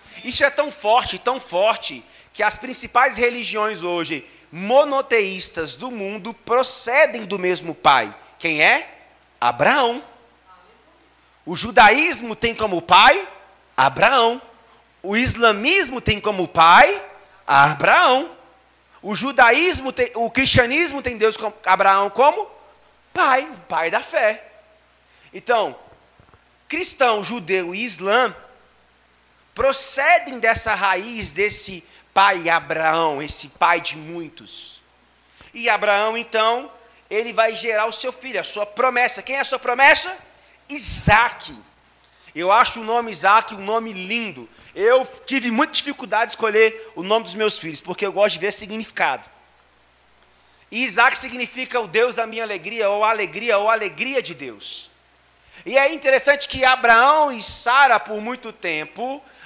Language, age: Portuguese, 30-49